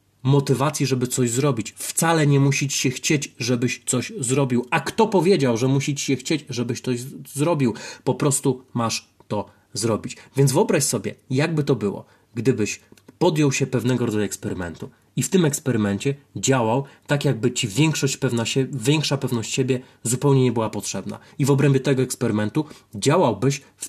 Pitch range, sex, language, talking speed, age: 120-145 Hz, male, Polish, 165 wpm, 30-49